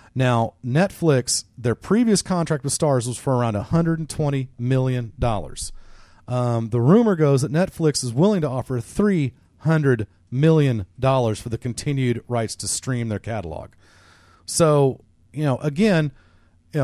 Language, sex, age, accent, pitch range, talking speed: English, male, 40-59, American, 110-165 Hz, 140 wpm